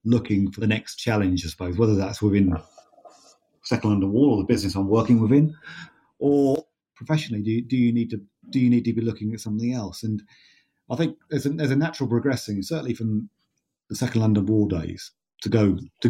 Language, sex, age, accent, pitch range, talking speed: English, male, 40-59, British, 105-125 Hz, 195 wpm